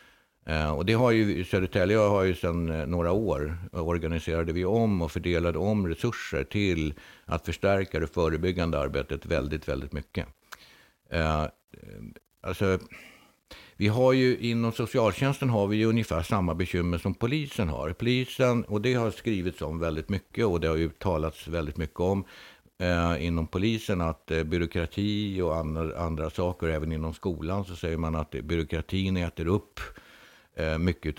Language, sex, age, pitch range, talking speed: Swedish, male, 60-79, 80-100 Hz, 155 wpm